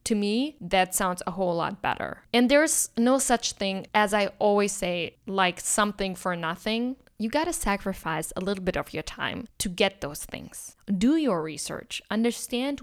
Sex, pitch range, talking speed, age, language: female, 180-240 Hz, 180 wpm, 10-29, English